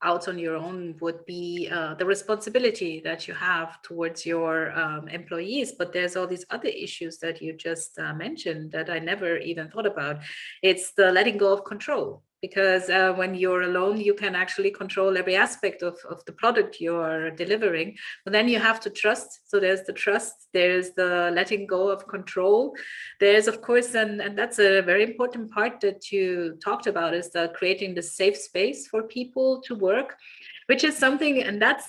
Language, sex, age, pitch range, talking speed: English, female, 30-49, 170-215 Hz, 190 wpm